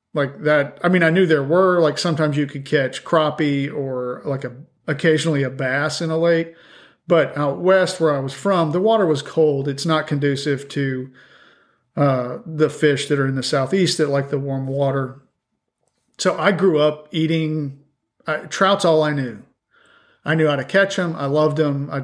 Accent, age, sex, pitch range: American, 40-59, male, 140-160 Hz